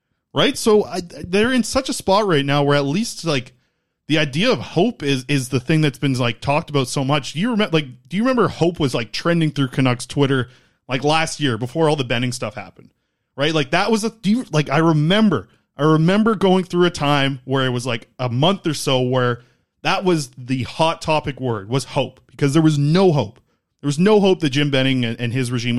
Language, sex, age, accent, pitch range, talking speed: English, male, 20-39, American, 130-165 Hz, 235 wpm